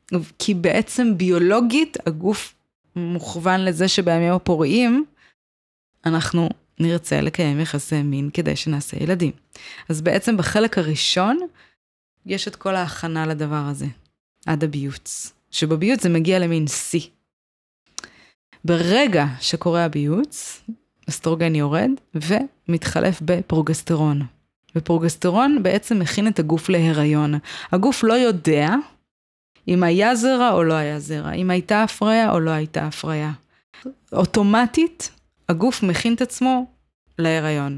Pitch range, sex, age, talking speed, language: 160-215 Hz, female, 20-39, 110 wpm, Hebrew